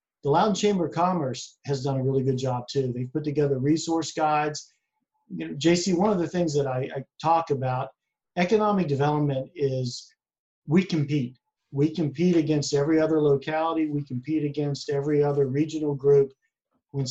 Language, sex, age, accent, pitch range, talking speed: English, male, 50-69, American, 135-160 Hz, 160 wpm